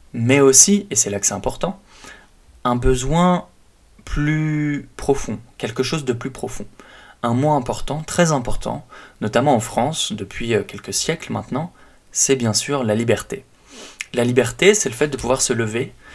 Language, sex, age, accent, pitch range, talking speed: French, male, 20-39, French, 105-135 Hz, 160 wpm